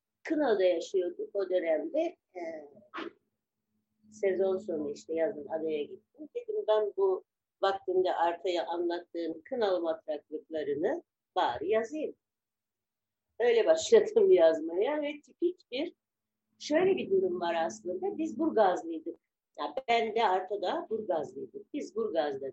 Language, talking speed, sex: Turkish, 110 wpm, female